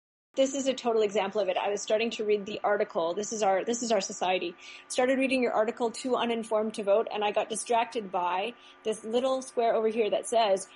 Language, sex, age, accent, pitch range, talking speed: English, female, 30-49, American, 210-255 Hz, 230 wpm